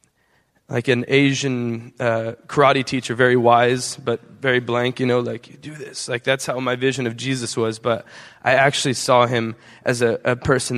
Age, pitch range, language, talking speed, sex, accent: 20-39, 120-135 Hz, English, 190 wpm, male, American